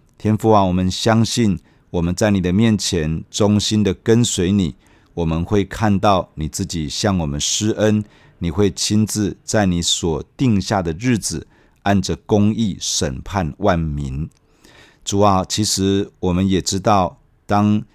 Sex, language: male, Chinese